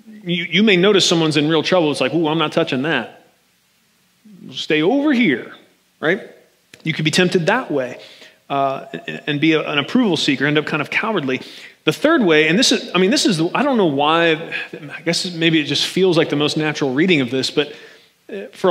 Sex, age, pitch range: male, 30-49, 145-180 Hz